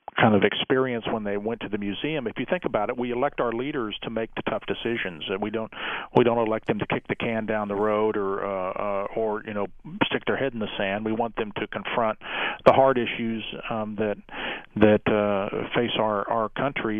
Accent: American